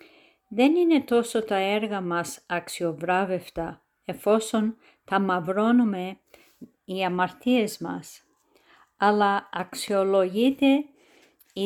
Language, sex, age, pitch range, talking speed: Greek, female, 50-69, 185-240 Hz, 75 wpm